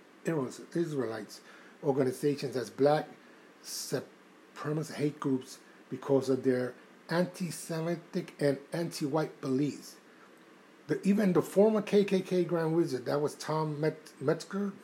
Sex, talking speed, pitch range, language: male, 105 wpm, 135-165 Hz, English